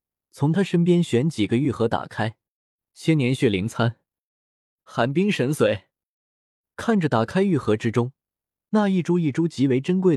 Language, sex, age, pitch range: Chinese, male, 20-39, 110-170 Hz